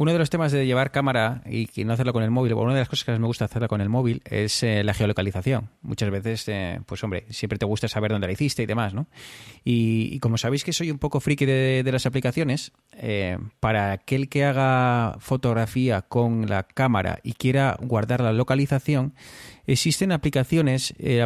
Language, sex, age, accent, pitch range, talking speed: Spanish, male, 30-49, Spanish, 115-145 Hz, 220 wpm